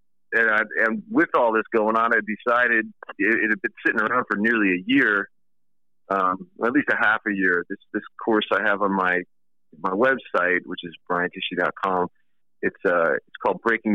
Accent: American